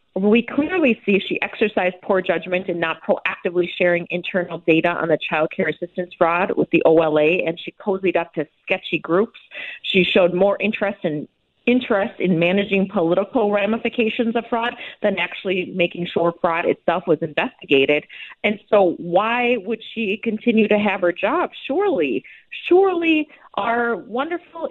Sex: female